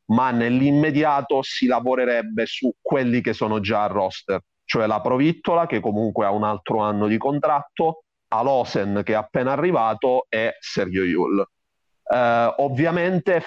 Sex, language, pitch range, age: male, Italian, 105-130 Hz, 40-59